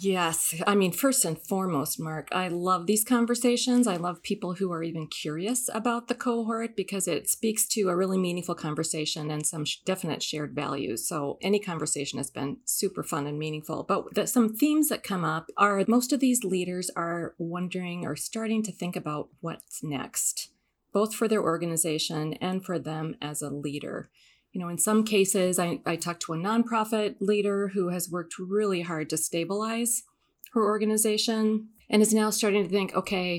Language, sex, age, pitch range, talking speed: English, female, 30-49, 170-215 Hz, 180 wpm